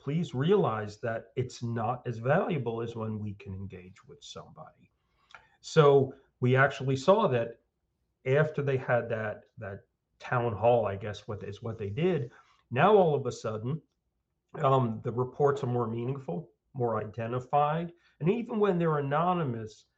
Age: 40-59